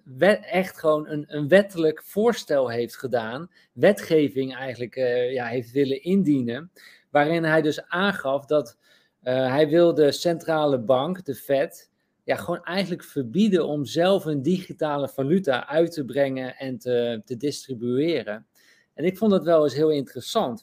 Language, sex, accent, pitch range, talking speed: Dutch, male, Dutch, 135-180 Hz, 145 wpm